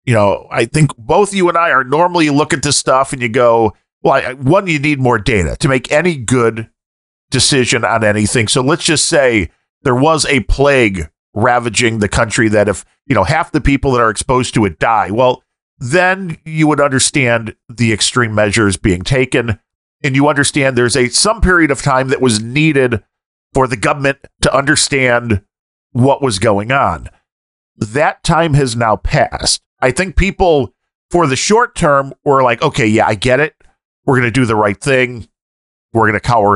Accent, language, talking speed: American, English, 185 wpm